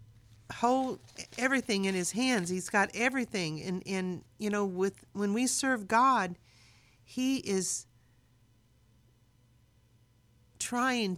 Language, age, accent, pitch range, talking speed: English, 50-69, American, 150-220 Hz, 115 wpm